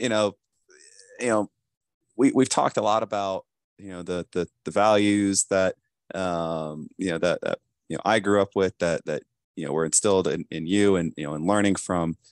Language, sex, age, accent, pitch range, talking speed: English, male, 30-49, American, 85-100 Hz, 200 wpm